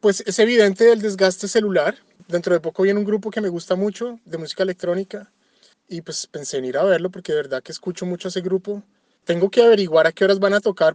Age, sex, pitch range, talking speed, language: 20-39, male, 175-215 Hz, 240 wpm, Spanish